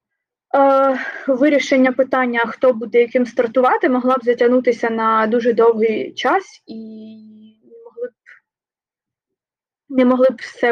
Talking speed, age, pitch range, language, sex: 125 wpm, 20-39, 240-320 Hz, Ukrainian, female